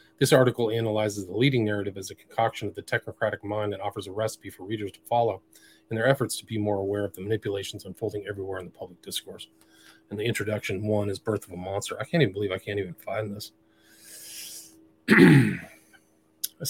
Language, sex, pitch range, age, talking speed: English, male, 100-115 Hz, 40-59, 200 wpm